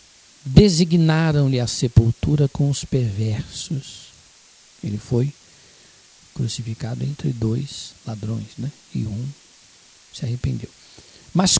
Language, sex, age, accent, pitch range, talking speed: Portuguese, male, 60-79, Brazilian, 120-140 Hz, 95 wpm